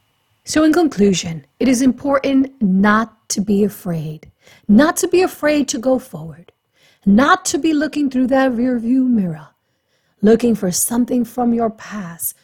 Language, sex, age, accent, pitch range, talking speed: English, female, 40-59, American, 185-270 Hz, 155 wpm